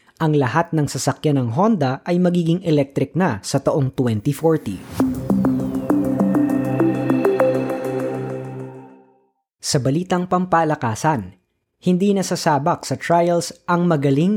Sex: female